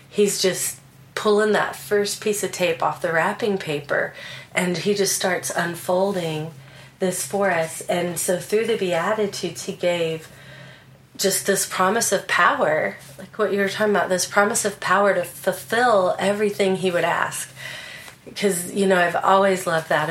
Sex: female